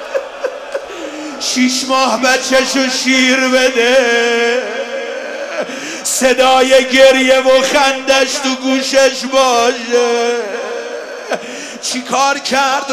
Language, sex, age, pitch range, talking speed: Persian, male, 50-69, 225-265 Hz, 70 wpm